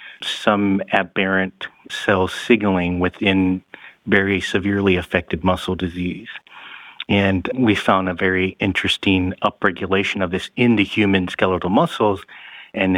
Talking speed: 115 wpm